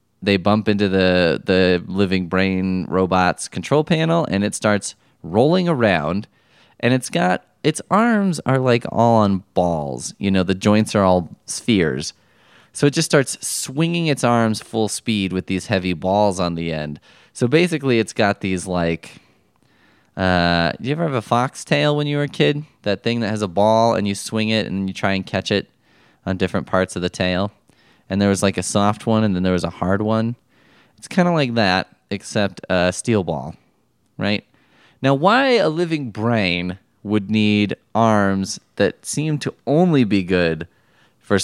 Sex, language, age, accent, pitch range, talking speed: male, English, 20-39, American, 90-120 Hz, 185 wpm